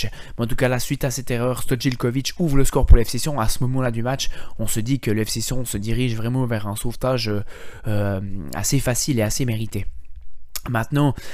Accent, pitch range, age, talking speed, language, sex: French, 115-135 Hz, 20-39, 200 wpm, French, male